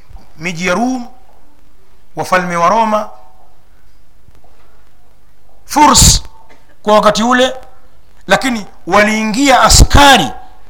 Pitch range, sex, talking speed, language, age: 225-290 Hz, male, 65 wpm, Swahili, 50-69